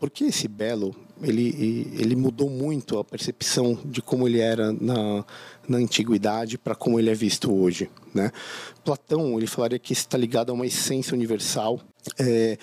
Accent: Brazilian